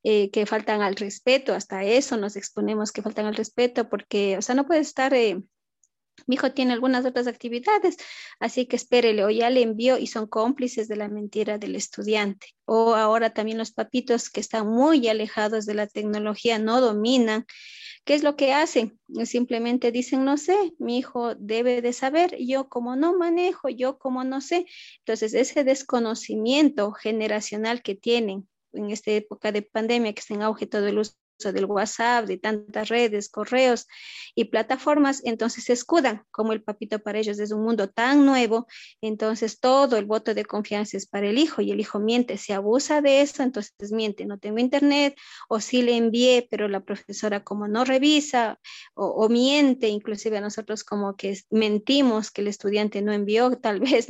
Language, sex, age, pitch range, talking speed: Spanish, female, 30-49, 215-255 Hz, 185 wpm